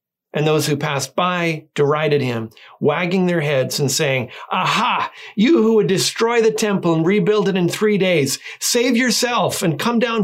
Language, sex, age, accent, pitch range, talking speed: English, male, 40-59, American, 145-205 Hz, 175 wpm